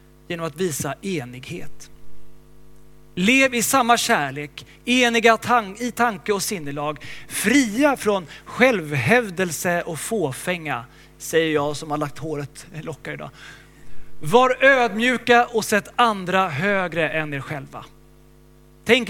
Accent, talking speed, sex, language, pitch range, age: native, 115 wpm, male, Swedish, 150-220 Hz, 30-49